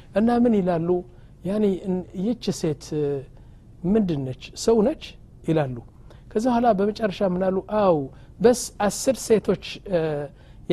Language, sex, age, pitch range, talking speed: Amharic, male, 60-79, 165-215 Hz, 90 wpm